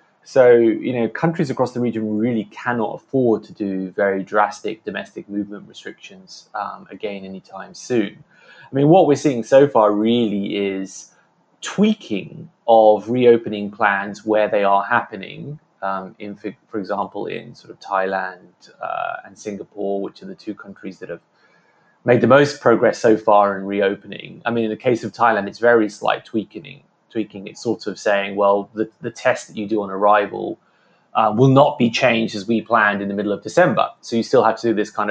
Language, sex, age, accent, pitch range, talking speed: English, male, 20-39, British, 100-120 Hz, 190 wpm